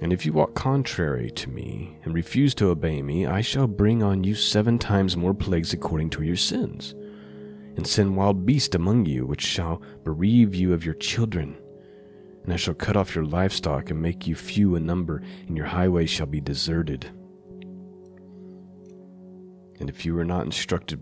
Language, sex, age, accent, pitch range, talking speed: English, male, 30-49, American, 80-100 Hz, 180 wpm